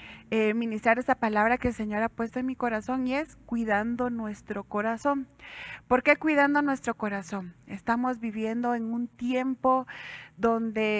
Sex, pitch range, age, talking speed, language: female, 220-255 Hz, 30-49, 155 wpm, Spanish